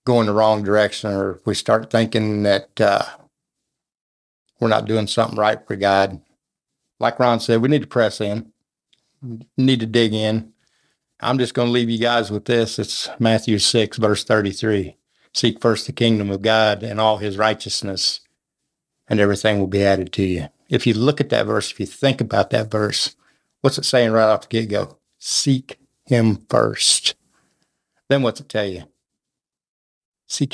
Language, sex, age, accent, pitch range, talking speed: English, male, 60-79, American, 105-125 Hz, 175 wpm